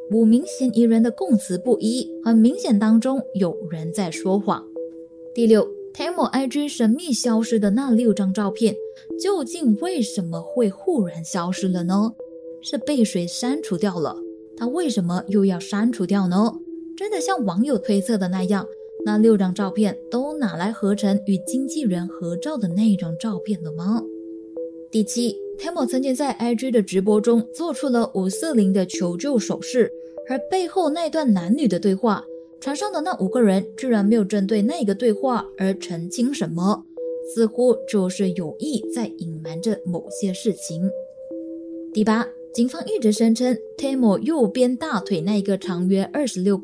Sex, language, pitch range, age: female, Chinese, 180-245 Hz, 20-39